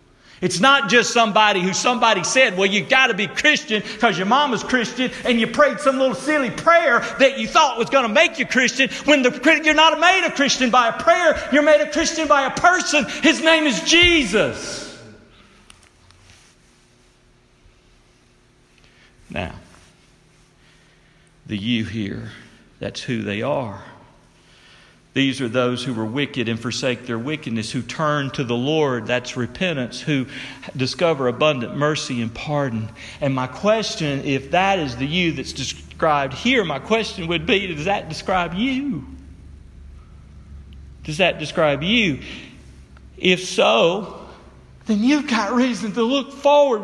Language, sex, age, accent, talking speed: English, male, 50-69, American, 150 wpm